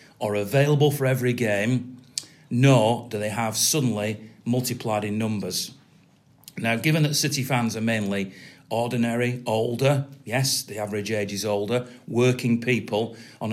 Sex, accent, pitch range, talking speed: male, British, 105-135 Hz, 135 wpm